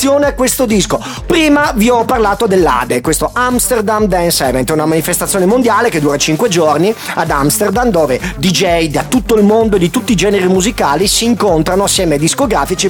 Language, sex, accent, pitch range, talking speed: Italian, male, native, 165-235 Hz, 175 wpm